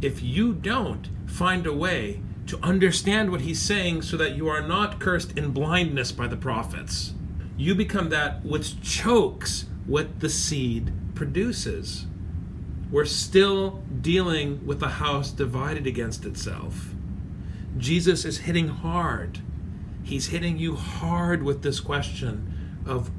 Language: English